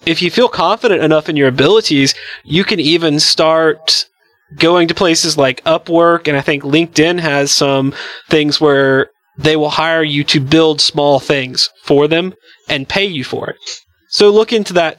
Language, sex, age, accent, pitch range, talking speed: English, male, 30-49, American, 150-190 Hz, 175 wpm